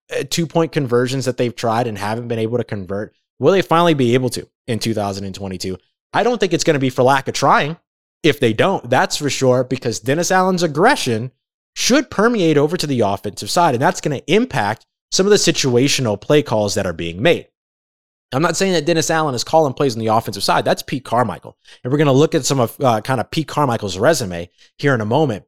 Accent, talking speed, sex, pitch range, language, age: American, 225 wpm, male, 115-165 Hz, English, 20-39